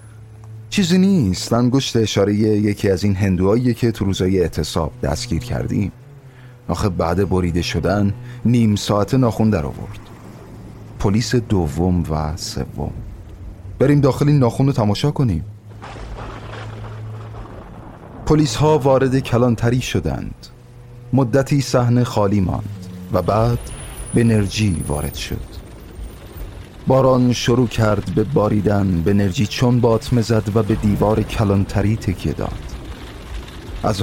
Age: 40-59